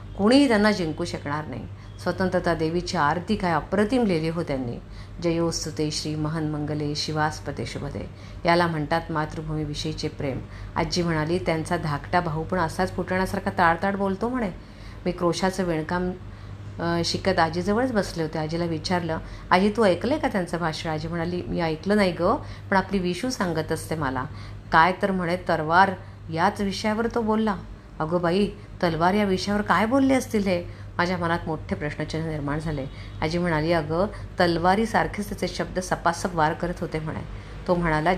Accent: native